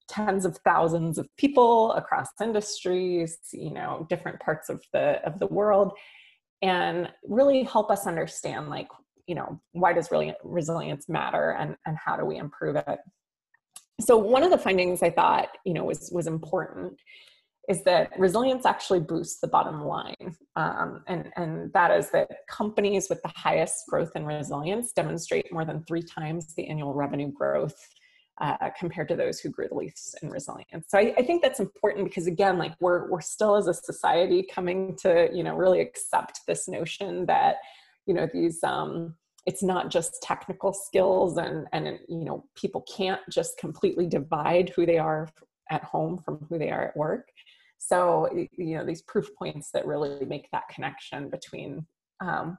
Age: 20-39